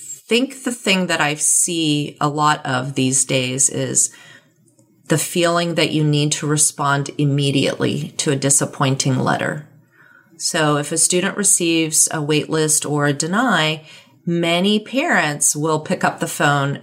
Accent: American